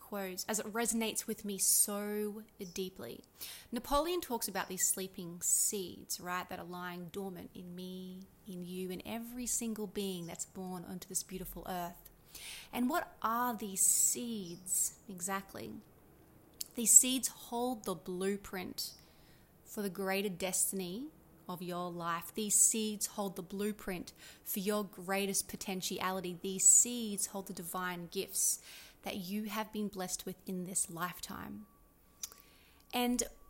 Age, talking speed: 30-49, 135 wpm